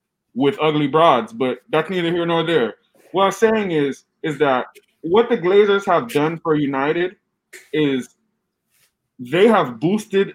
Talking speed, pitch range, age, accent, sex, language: 150 wpm, 150-195 Hz, 20-39, American, male, English